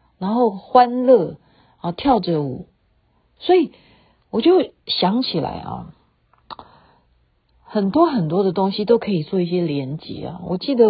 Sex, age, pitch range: female, 50-69, 150-195 Hz